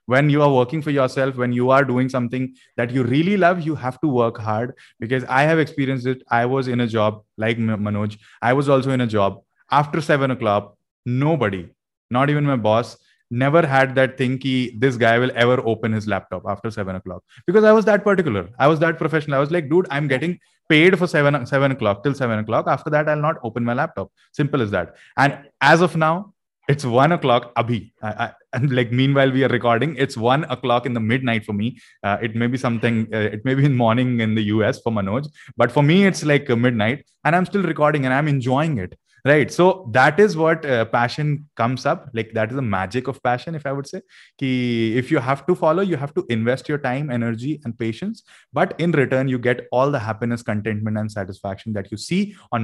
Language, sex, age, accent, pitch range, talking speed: Hindi, male, 20-39, native, 115-145 Hz, 225 wpm